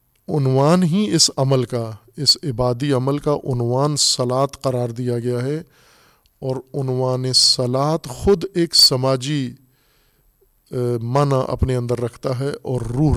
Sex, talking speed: male, 130 wpm